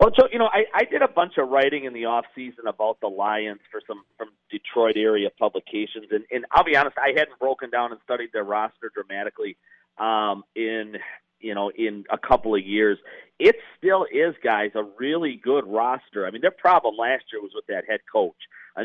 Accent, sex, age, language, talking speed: American, male, 40-59, English, 215 wpm